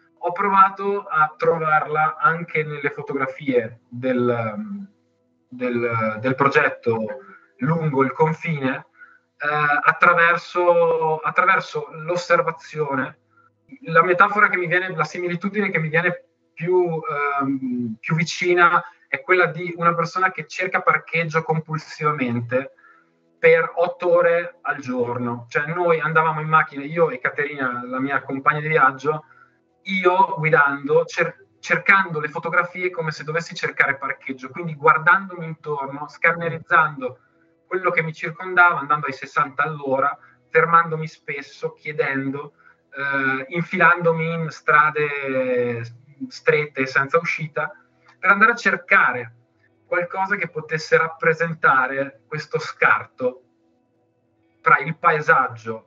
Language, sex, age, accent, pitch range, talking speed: Italian, male, 20-39, native, 135-175 Hz, 110 wpm